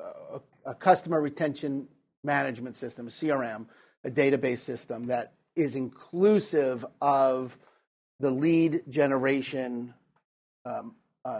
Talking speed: 105 wpm